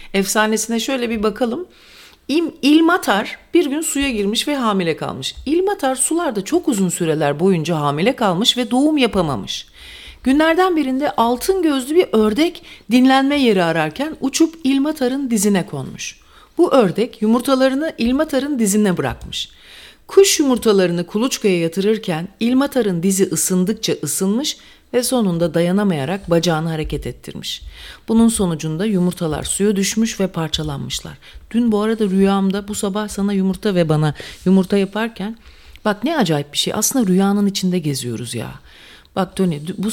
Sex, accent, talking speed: female, Turkish, 135 wpm